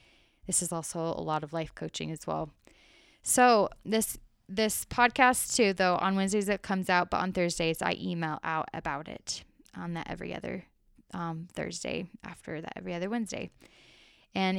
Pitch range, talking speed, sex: 175-215 Hz, 170 wpm, female